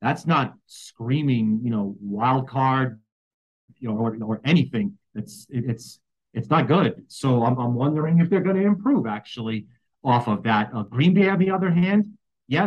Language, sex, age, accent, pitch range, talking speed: English, male, 40-59, American, 120-170 Hz, 180 wpm